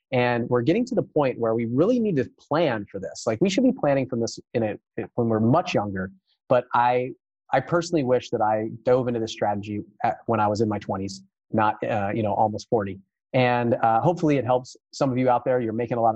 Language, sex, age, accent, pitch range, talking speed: English, male, 30-49, American, 110-135 Hz, 240 wpm